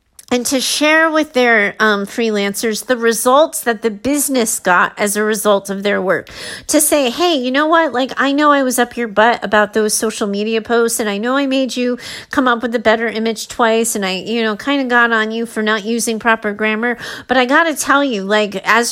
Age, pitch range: 40-59, 230-290 Hz